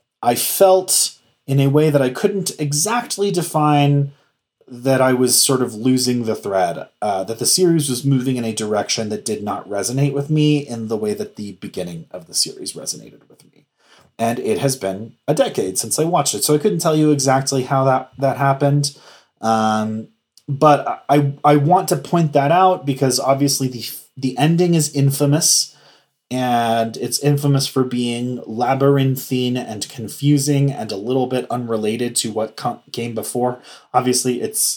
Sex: male